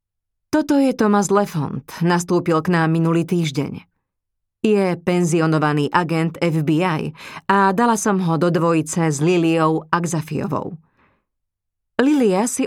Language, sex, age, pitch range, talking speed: Slovak, female, 30-49, 155-190 Hz, 115 wpm